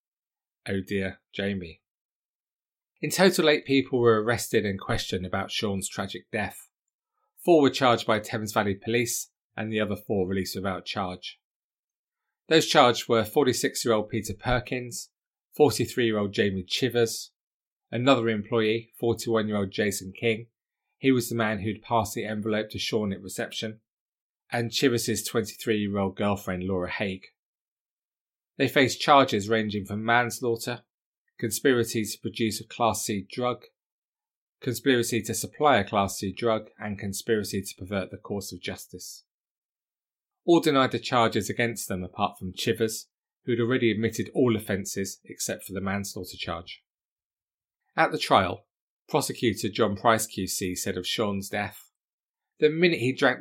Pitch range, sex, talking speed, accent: 100-120 Hz, male, 150 wpm, British